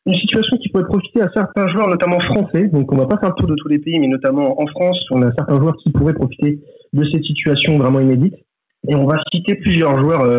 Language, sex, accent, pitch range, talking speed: French, male, French, 140-185 Hz, 255 wpm